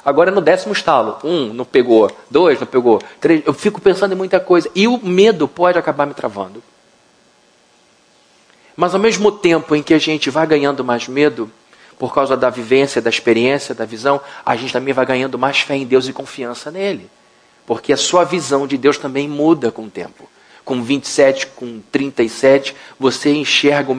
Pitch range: 135-180 Hz